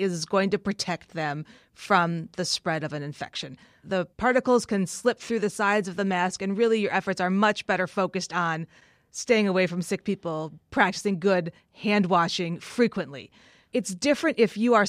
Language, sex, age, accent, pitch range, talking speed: English, female, 30-49, American, 170-200 Hz, 175 wpm